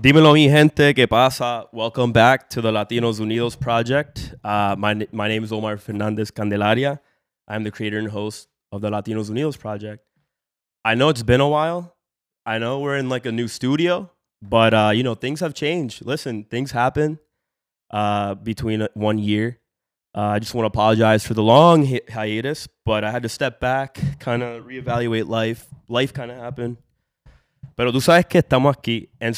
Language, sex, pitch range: English, male, 110-140 Hz